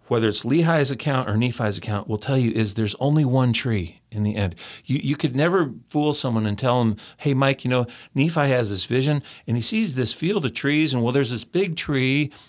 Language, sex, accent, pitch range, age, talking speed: English, male, American, 110-145 Hz, 40-59, 230 wpm